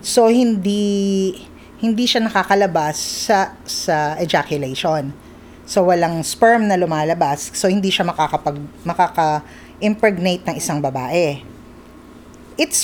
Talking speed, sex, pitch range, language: 105 wpm, female, 160-215 Hz, English